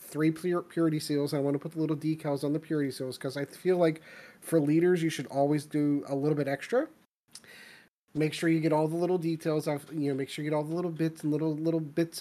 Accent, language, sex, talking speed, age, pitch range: American, English, male, 250 wpm, 30-49, 145-175 Hz